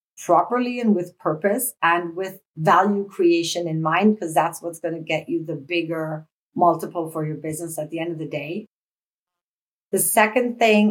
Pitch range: 170-215 Hz